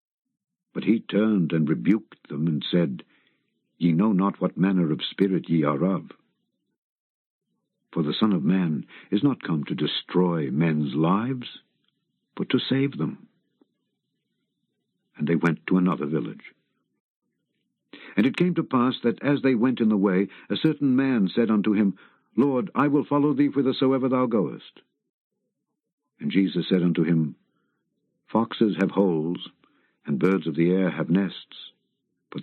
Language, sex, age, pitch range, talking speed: English, male, 60-79, 90-125 Hz, 150 wpm